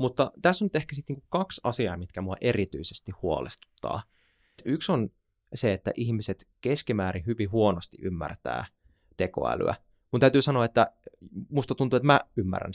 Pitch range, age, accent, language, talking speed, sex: 95-115 Hz, 20-39, native, Finnish, 140 wpm, male